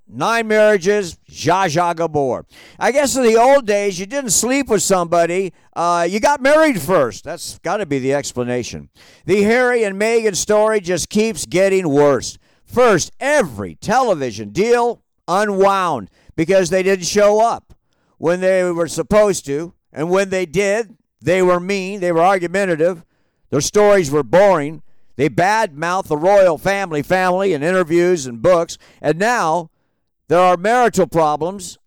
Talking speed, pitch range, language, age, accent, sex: 150 wpm, 165-205 Hz, English, 50-69, American, male